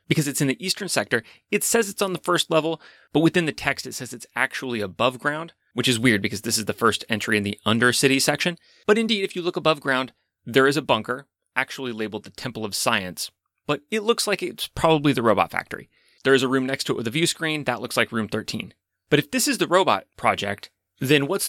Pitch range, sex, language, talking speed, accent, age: 120-175 Hz, male, English, 245 wpm, American, 30-49